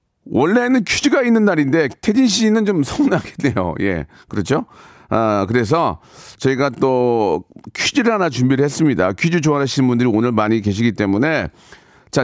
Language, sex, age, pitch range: Korean, male, 40-59, 130-195 Hz